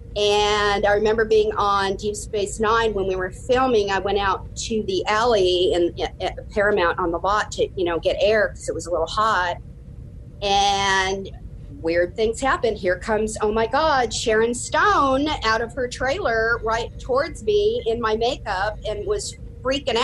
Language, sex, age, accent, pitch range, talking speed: English, female, 40-59, American, 195-235 Hz, 180 wpm